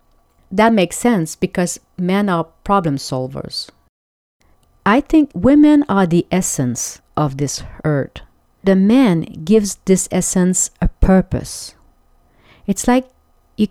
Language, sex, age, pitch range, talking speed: English, female, 40-59, 140-185 Hz, 120 wpm